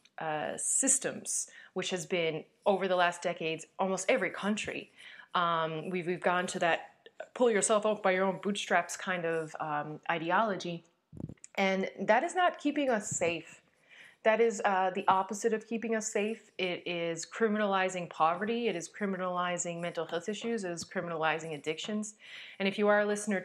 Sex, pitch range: female, 165-210 Hz